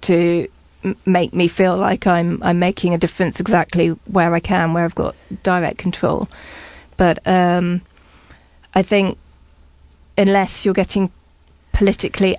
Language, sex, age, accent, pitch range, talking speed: English, female, 30-49, British, 170-185 Hz, 130 wpm